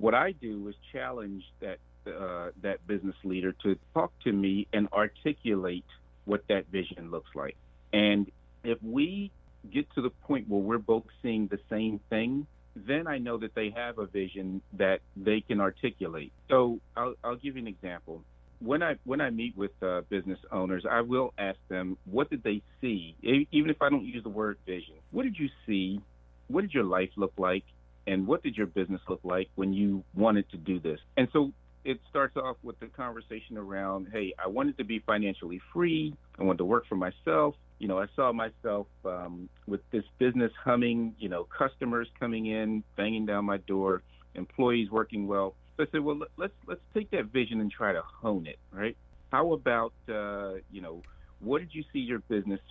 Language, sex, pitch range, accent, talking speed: English, male, 90-120 Hz, American, 195 wpm